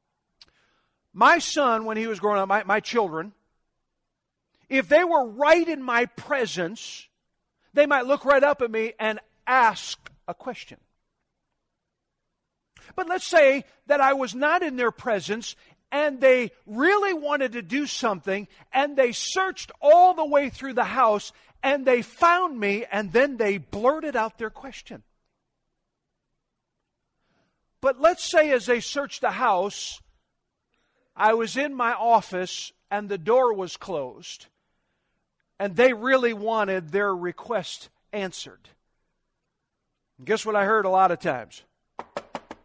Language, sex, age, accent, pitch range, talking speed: English, male, 50-69, American, 200-285 Hz, 140 wpm